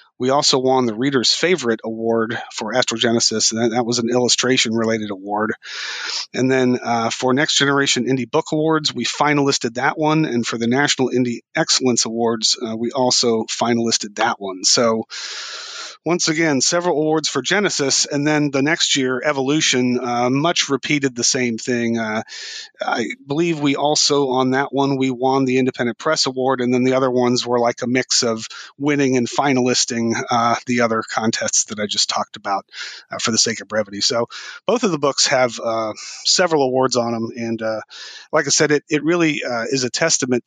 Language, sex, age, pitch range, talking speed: English, male, 40-59, 115-140 Hz, 185 wpm